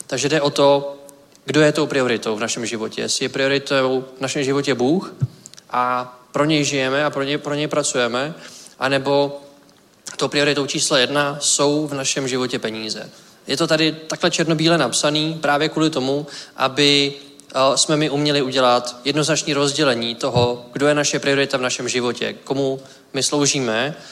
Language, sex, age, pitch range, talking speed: Czech, male, 20-39, 125-150 Hz, 160 wpm